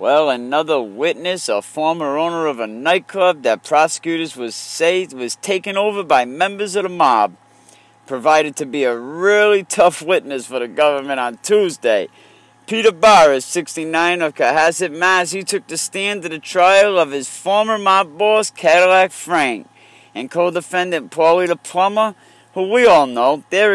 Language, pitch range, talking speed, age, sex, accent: English, 120-180 Hz, 160 wpm, 40-59, male, American